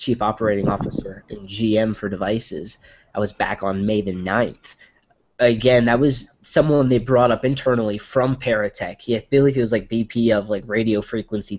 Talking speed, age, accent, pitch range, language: 175 wpm, 20-39, American, 105-125 Hz, English